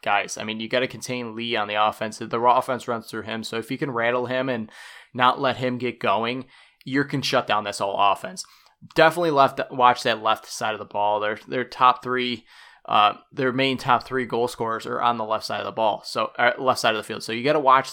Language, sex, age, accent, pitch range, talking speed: English, male, 20-39, American, 115-135 Hz, 250 wpm